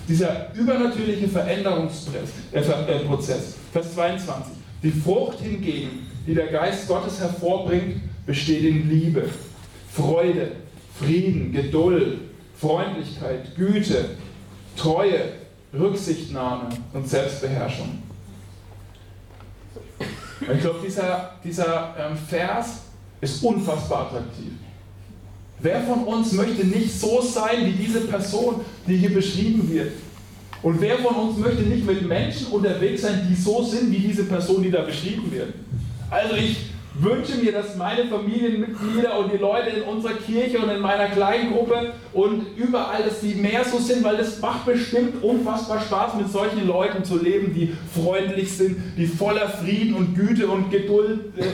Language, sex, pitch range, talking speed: German, male, 160-215 Hz, 130 wpm